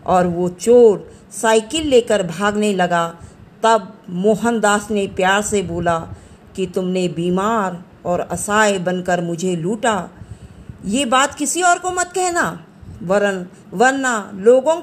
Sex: female